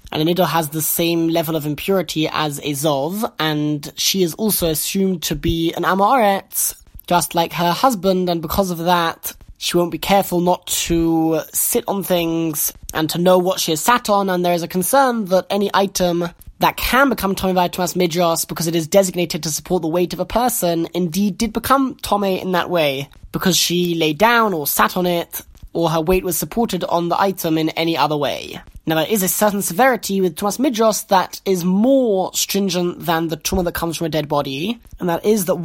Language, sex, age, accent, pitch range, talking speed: English, male, 20-39, British, 160-190 Hz, 210 wpm